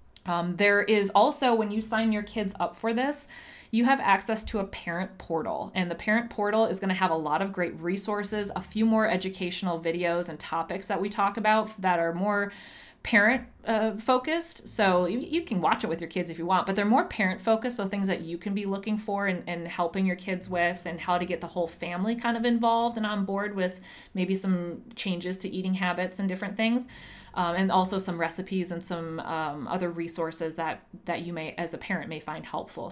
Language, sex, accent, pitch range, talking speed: English, female, American, 175-220 Hz, 225 wpm